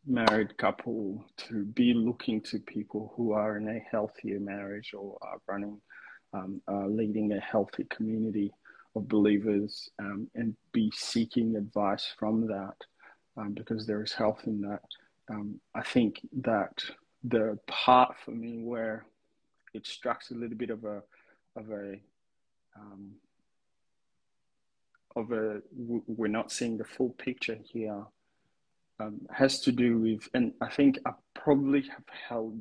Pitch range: 105-115 Hz